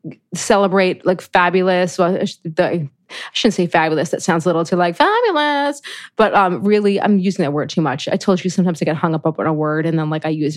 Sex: female